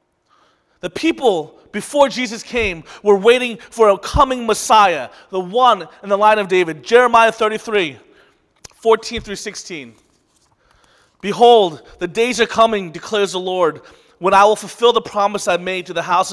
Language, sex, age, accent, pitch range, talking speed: English, male, 30-49, American, 175-230 Hz, 145 wpm